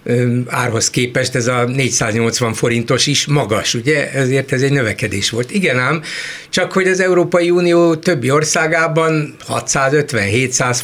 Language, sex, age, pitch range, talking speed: Hungarian, male, 60-79, 110-150 Hz, 135 wpm